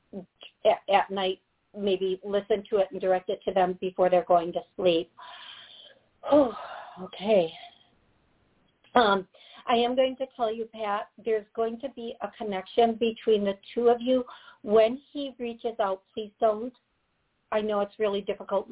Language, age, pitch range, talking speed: English, 50-69, 190-220 Hz, 155 wpm